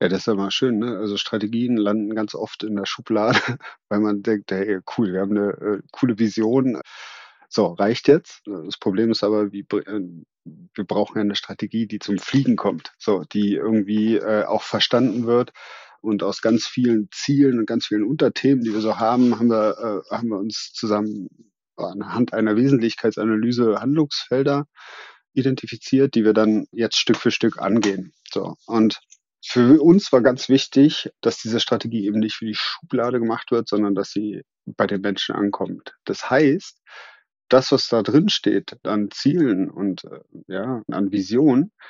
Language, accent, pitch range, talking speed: German, German, 105-125 Hz, 170 wpm